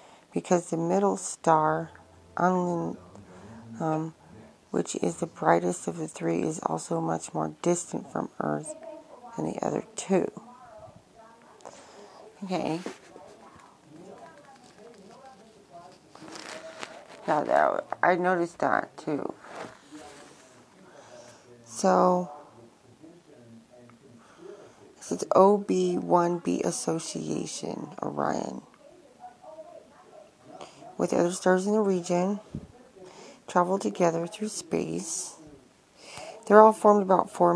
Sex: female